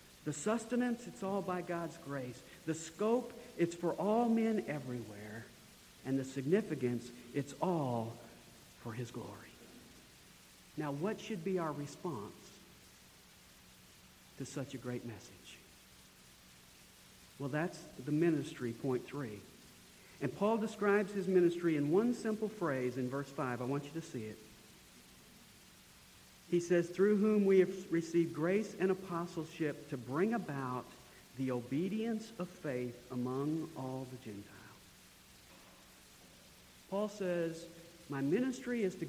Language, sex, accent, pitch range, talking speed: English, male, American, 125-190 Hz, 130 wpm